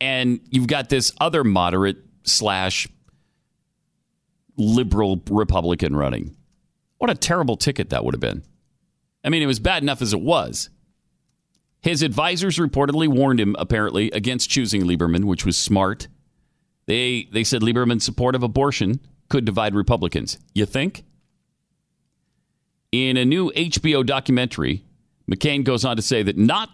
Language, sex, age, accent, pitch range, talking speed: English, male, 40-59, American, 95-130 Hz, 140 wpm